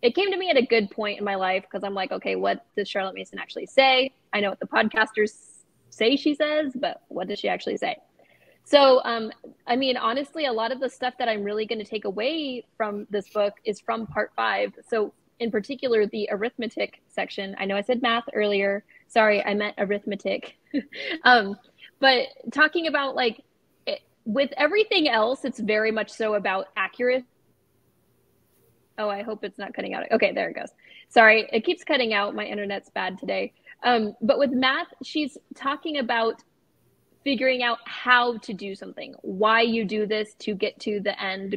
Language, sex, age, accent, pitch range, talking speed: English, female, 20-39, American, 210-265 Hz, 190 wpm